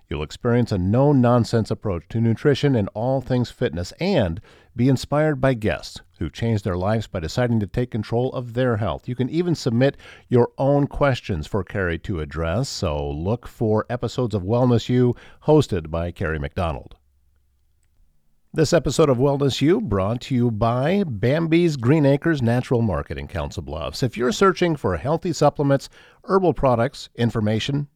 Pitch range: 95-145 Hz